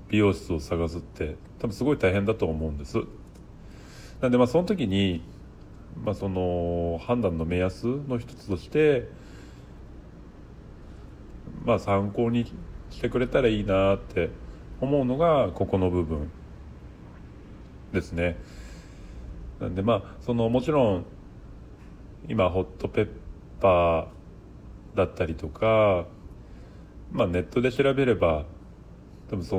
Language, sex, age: Japanese, male, 40-59